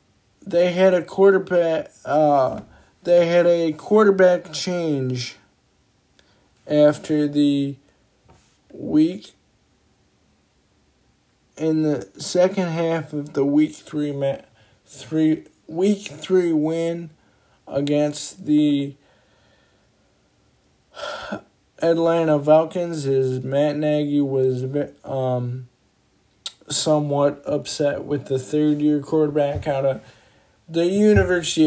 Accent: American